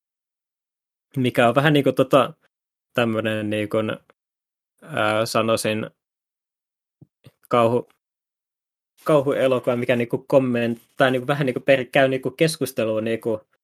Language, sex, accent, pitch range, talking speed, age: Finnish, male, native, 115-135 Hz, 90 wpm, 20-39